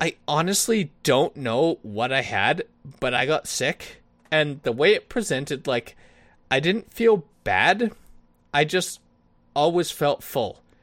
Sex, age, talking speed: male, 20-39, 145 wpm